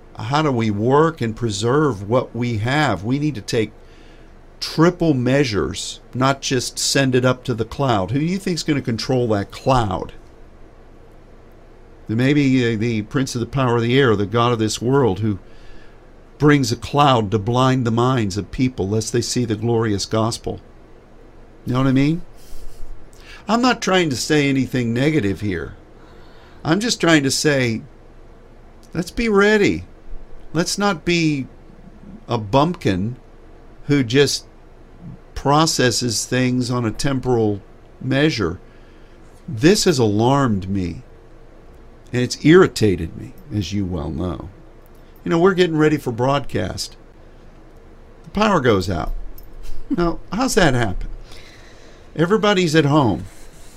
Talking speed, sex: 145 wpm, male